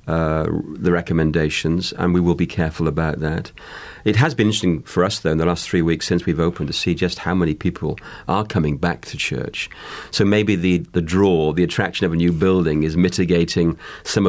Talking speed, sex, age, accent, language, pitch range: 210 wpm, male, 50-69, British, English, 85-105 Hz